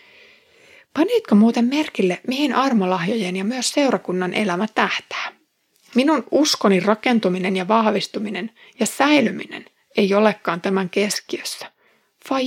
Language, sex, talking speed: Finnish, female, 105 wpm